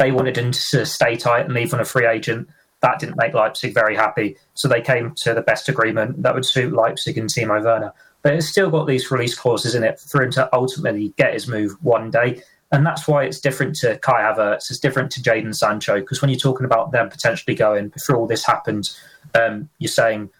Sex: male